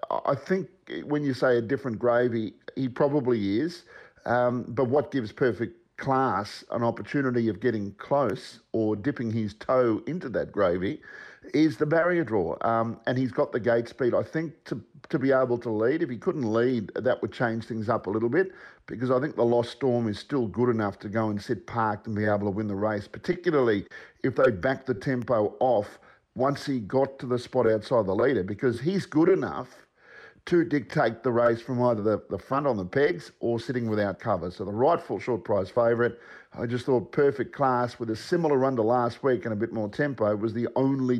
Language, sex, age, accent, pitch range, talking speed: English, male, 50-69, Australian, 115-145 Hz, 210 wpm